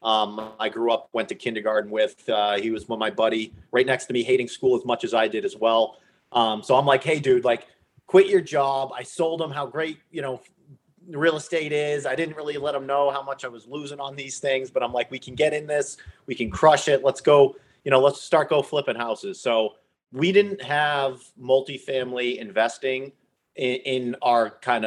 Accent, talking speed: American, 225 wpm